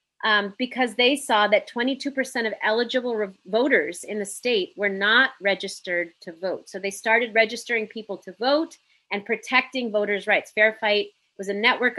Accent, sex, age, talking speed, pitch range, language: American, female, 30-49, 165 wpm, 200-245 Hz, English